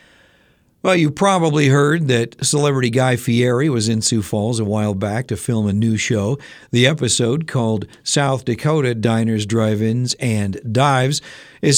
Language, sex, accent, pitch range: Japanese, male, American, 105-140 Hz